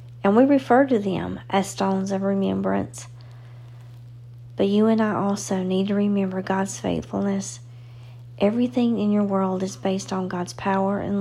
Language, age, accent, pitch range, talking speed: English, 40-59, American, 120-200 Hz, 155 wpm